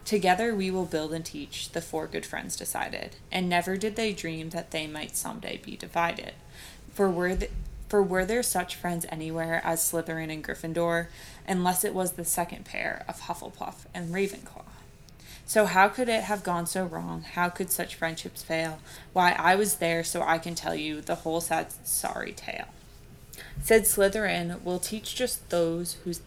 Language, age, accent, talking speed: English, 20-39, American, 180 wpm